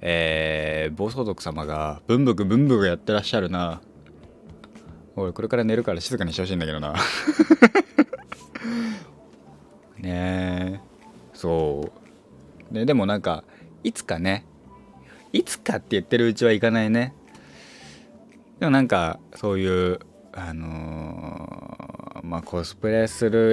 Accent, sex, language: native, male, Japanese